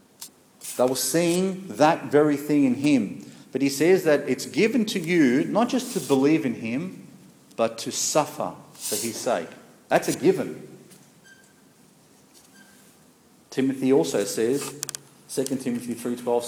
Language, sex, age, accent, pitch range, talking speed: English, male, 40-59, Australian, 125-150 Hz, 135 wpm